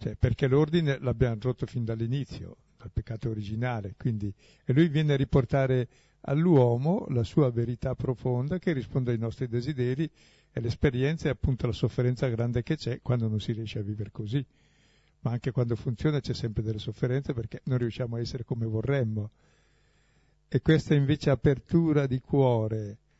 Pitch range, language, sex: 115-135 Hz, Italian, male